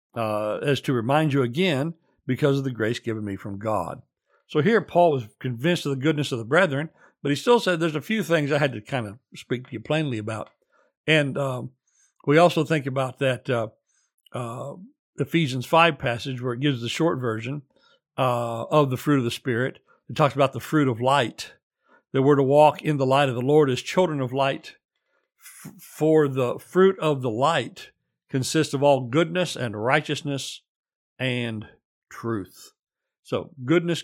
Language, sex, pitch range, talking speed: English, male, 125-160 Hz, 185 wpm